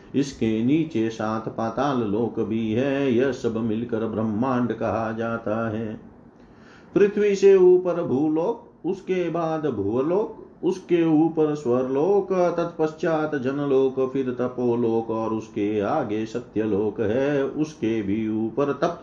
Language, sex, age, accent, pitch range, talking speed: Hindi, male, 50-69, native, 115-145 Hz, 115 wpm